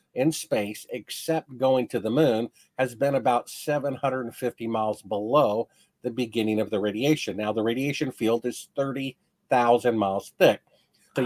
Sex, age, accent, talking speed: male, 50-69, American, 145 wpm